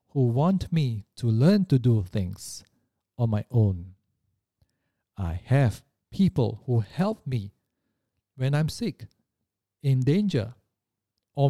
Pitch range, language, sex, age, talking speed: 105-145 Hz, English, male, 50-69, 120 wpm